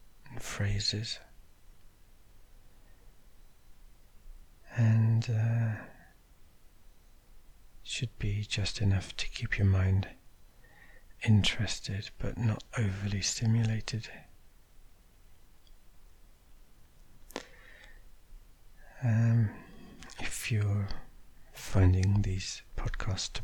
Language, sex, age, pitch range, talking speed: English, male, 60-79, 95-110 Hz, 60 wpm